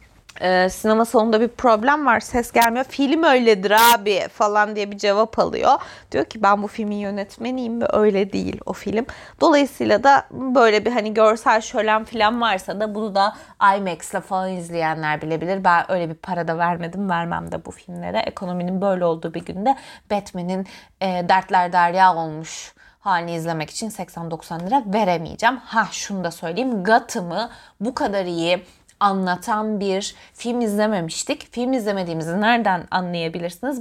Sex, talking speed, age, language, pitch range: female, 150 wpm, 30-49, Turkish, 180-245 Hz